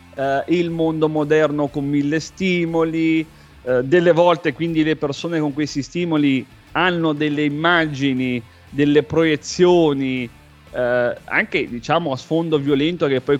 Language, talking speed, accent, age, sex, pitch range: Italian, 115 wpm, native, 30-49, male, 125-160 Hz